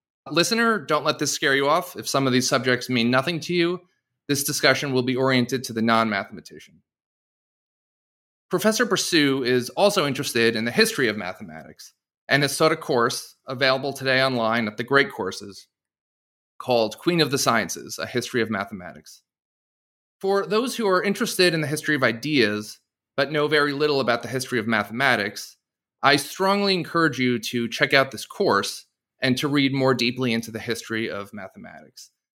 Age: 30-49